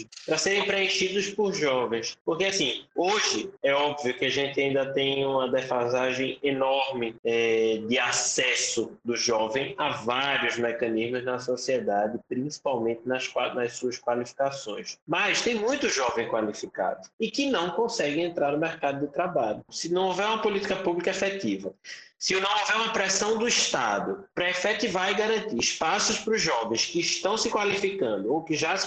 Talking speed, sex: 160 wpm, male